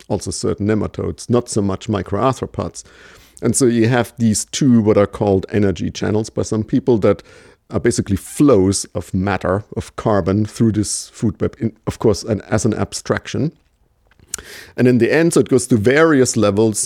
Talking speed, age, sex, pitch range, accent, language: 170 wpm, 50-69, male, 100-120 Hz, German, English